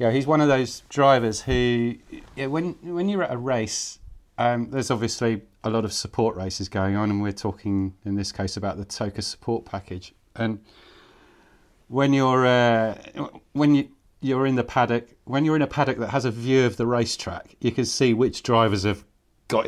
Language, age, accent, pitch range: English, 30-49, British, 100-125 Hz